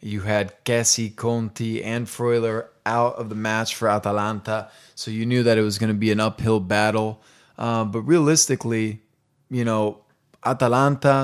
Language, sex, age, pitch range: English, male, 20-39, 105-120 Hz